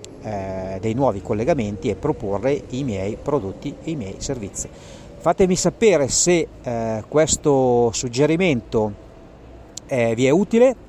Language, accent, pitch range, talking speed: Italian, native, 110-140 Hz, 125 wpm